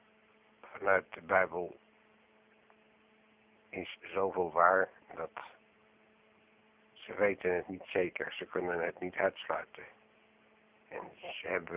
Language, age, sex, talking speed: Dutch, 60-79, male, 100 wpm